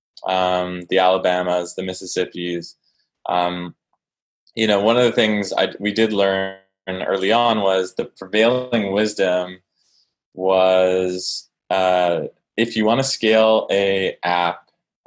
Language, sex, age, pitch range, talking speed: English, male, 20-39, 90-110 Hz, 125 wpm